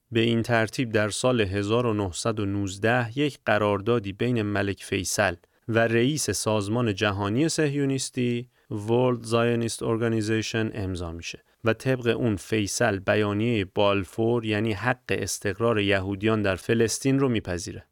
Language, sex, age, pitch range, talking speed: Persian, male, 30-49, 105-130 Hz, 115 wpm